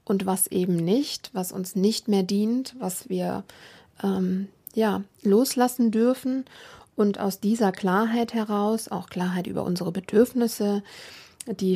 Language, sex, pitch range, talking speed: German, female, 185-215 Hz, 135 wpm